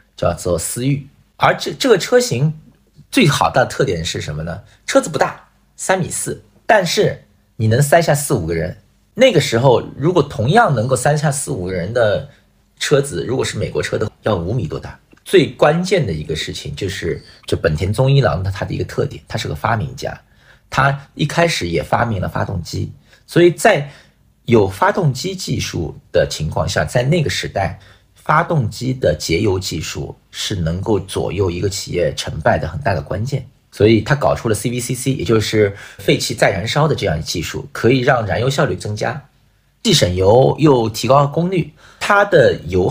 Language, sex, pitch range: Chinese, male, 100-155 Hz